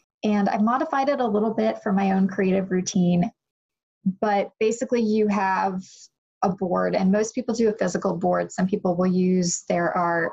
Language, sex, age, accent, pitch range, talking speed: English, female, 20-39, American, 180-205 Hz, 180 wpm